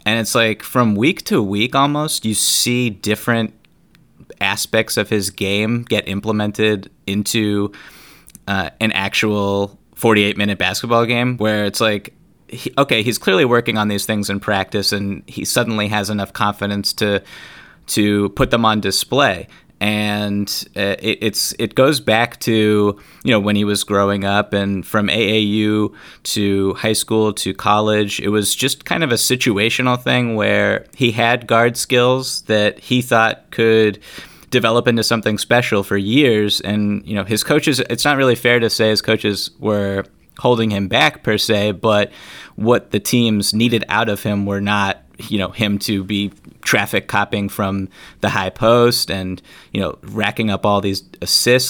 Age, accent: 30-49, American